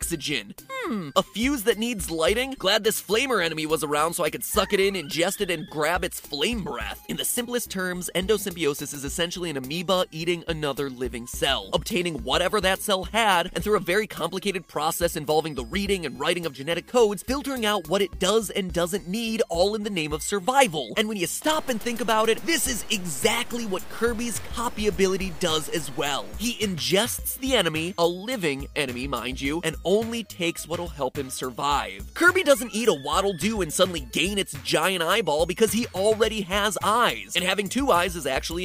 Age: 20-39